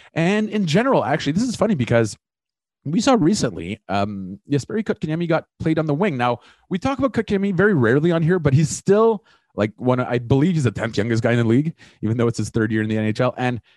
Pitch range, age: 100-150 Hz, 30-49